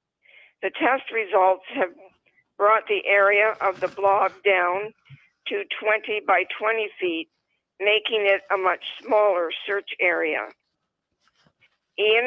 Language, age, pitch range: English, 50-69, 195-235 Hz